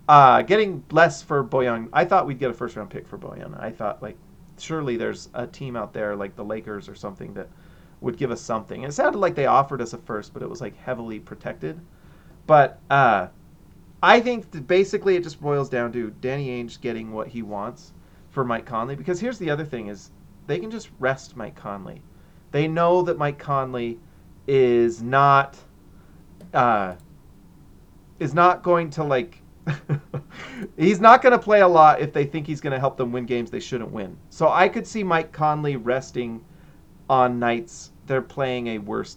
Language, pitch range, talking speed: English, 115-160 Hz, 195 wpm